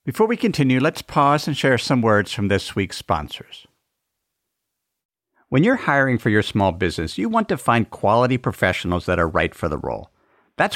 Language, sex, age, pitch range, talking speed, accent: English, male, 50-69, 100-165 Hz, 185 wpm, American